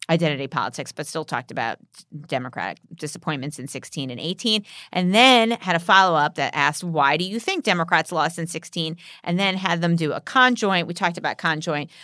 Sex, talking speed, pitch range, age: female, 195 wpm, 150-195 Hz, 30-49